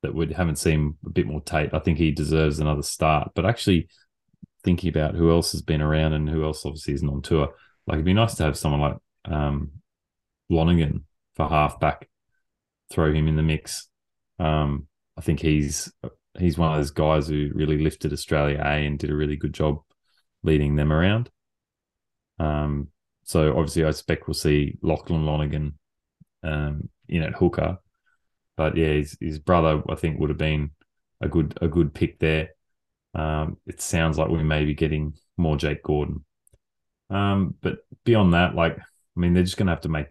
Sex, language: male, English